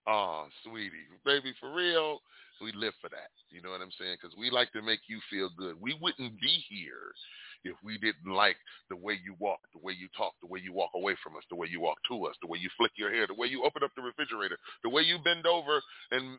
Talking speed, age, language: 255 wpm, 30-49, English